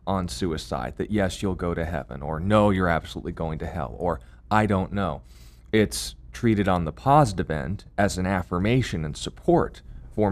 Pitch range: 80-100 Hz